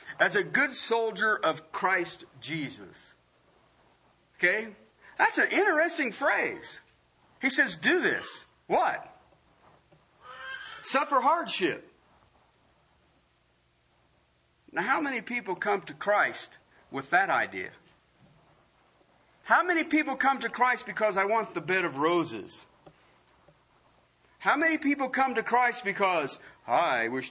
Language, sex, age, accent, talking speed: English, male, 50-69, American, 110 wpm